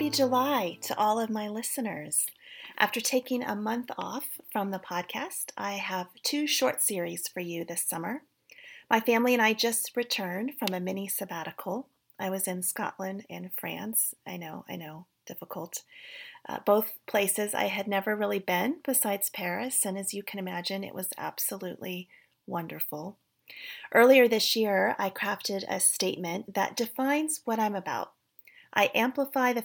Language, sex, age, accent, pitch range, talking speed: English, female, 30-49, American, 180-235 Hz, 160 wpm